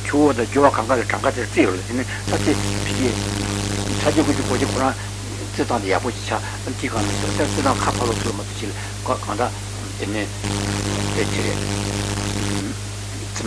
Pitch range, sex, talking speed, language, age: 100-120 Hz, male, 45 wpm, Italian, 60-79